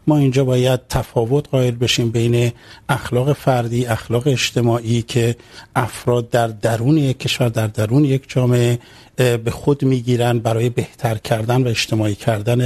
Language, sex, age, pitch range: Urdu, male, 50-69, 120-145 Hz